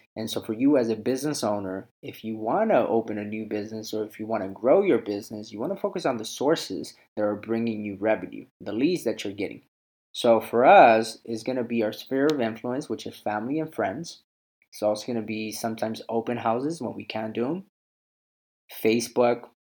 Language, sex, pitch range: English, male, 110-125 Hz